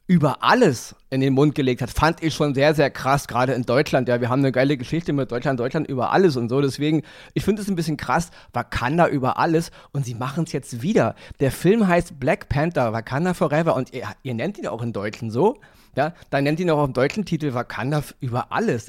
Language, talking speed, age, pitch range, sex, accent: German, 230 wpm, 40-59, 130-170 Hz, male, German